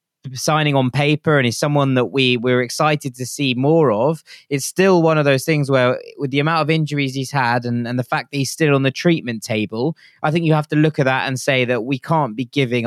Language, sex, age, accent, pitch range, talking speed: English, male, 20-39, British, 125-145 Hz, 255 wpm